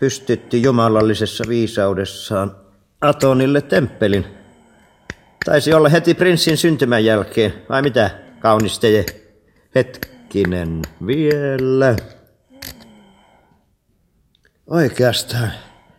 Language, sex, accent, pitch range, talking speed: Finnish, male, native, 95-140 Hz, 65 wpm